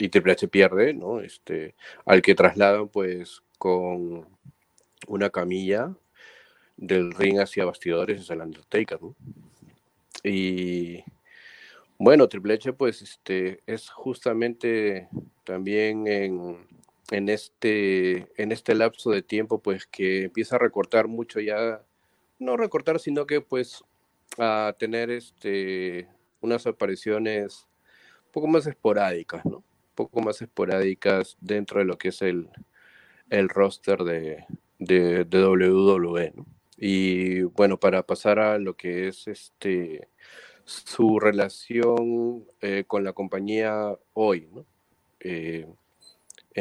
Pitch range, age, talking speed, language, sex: 95-110 Hz, 40-59, 120 wpm, Spanish, male